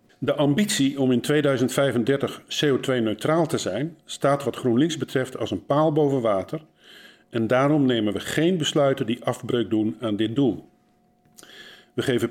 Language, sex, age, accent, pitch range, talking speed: Dutch, male, 50-69, Dutch, 115-145 Hz, 150 wpm